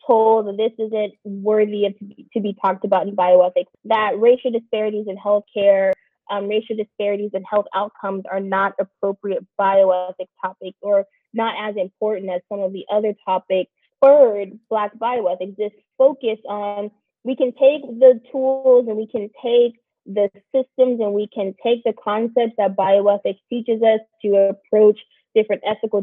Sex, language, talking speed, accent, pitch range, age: female, English, 155 wpm, American, 200-235 Hz, 20-39